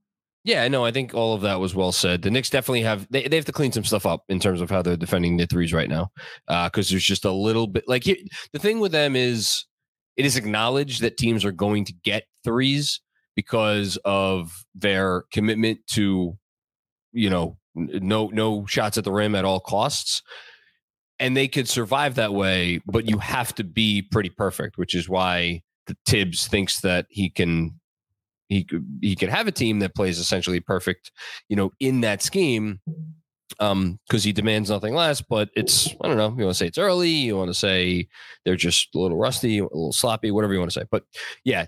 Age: 20-39